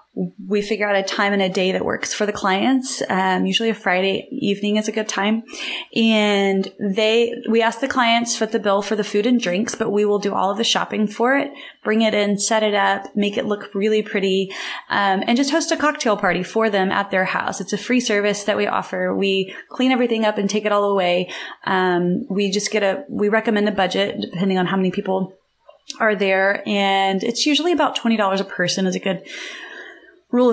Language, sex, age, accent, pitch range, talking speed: English, female, 20-39, American, 195-230 Hz, 220 wpm